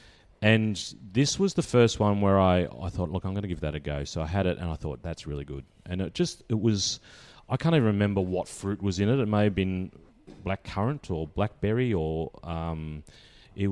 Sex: male